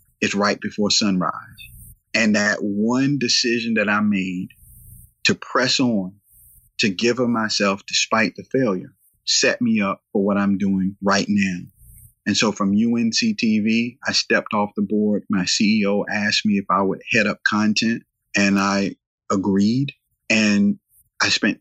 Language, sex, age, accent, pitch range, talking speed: English, male, 30-49, American, 95-110 Hz, 155 wpm